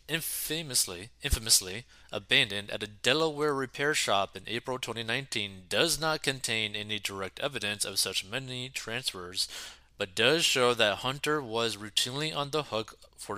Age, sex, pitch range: 20-39, male, 100-125 Hz